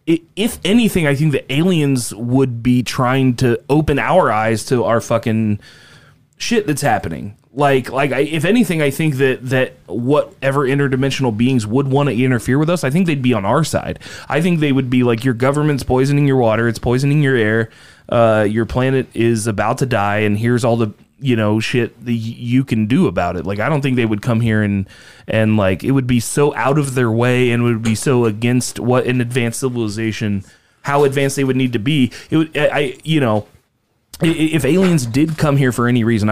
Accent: American